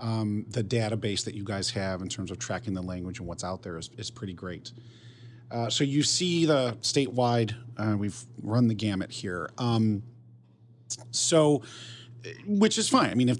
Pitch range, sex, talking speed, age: 110-130 Hz, male, 185 wpm, 40-59